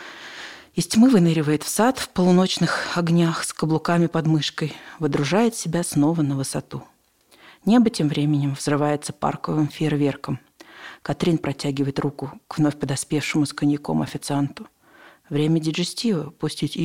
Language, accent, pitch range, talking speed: Russian, native, 145-190 Hz, 125 wpm